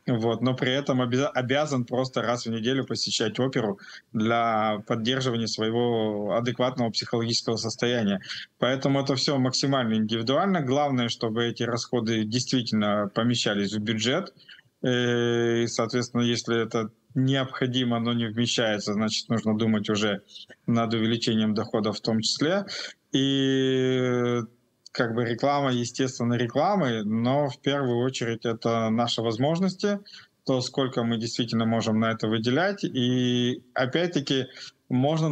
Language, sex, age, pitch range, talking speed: Russian, male, 20-39, 115-135 Hz, 120 wpm